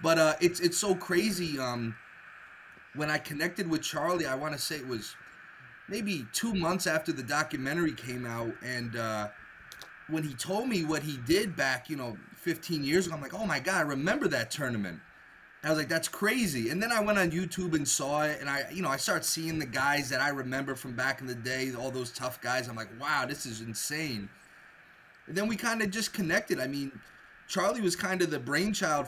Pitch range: 130-175 Hz